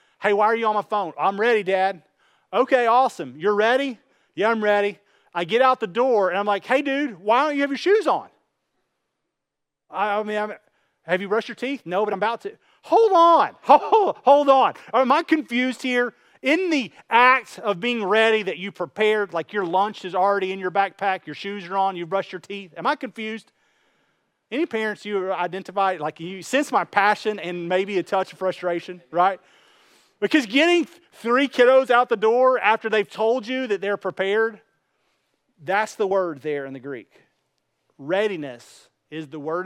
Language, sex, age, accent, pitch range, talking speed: English, male, 30-49, American, 175-235 Hz, 190 wpm